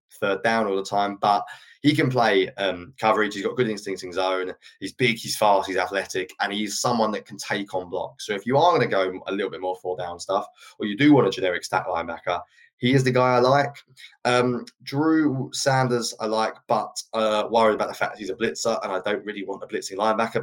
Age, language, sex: 20-39, English, male